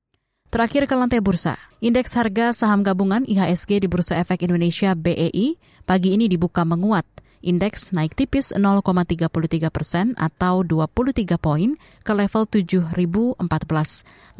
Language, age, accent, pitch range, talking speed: Indonesian, 20-39, native, 165-205 Hz, 120 wpm